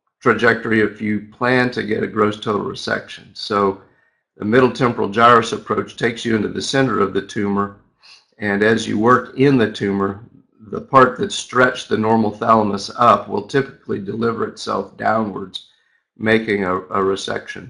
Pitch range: 105-125 Hz